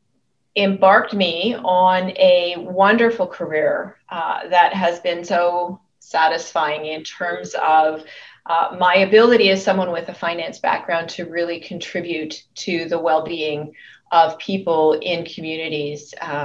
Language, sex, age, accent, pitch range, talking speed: English, female, 30-49, American, 155-200 Hz, 125 wpm